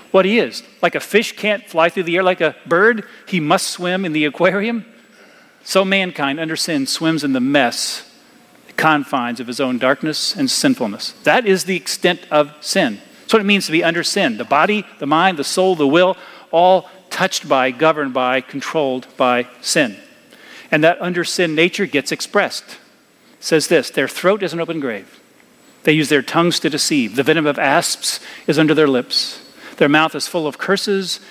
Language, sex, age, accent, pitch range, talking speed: English, male, 40-59, American, 150-195 Hz, 195 wpm